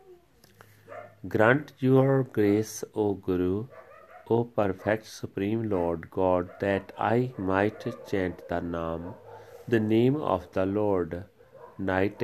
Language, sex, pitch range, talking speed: Punjabi, male, 95-110 Hz, 110 wpm